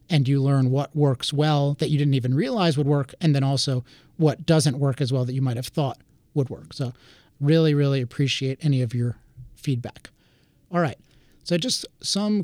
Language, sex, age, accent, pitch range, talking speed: English, male, 30-49, American, 130-155 Hz, 200 wpm